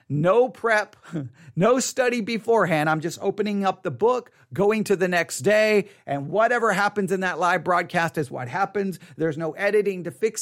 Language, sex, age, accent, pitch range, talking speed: English, male, 40-59, American, 140-215 Hz, 180 wpm